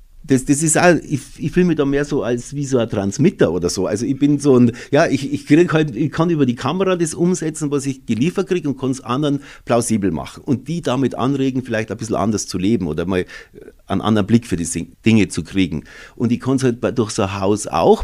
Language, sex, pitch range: German, male, 110-150 Hz